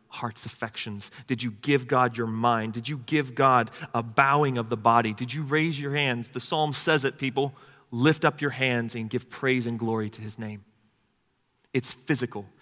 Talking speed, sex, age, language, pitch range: 195 wpm, male, 30-49, English, 120-155 Hz